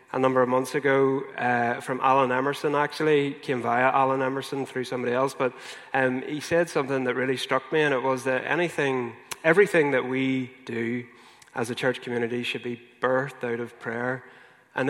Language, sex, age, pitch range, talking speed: English, male, 20-39, 125-140 Hz, 185 wpm